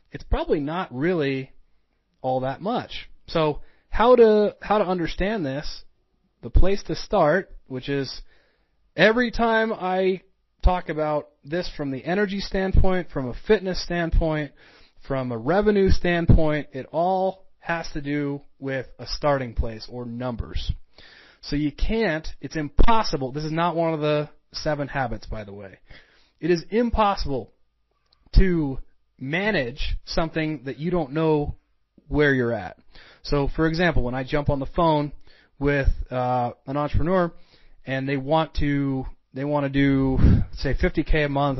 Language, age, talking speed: English, 30-49, 150 wpm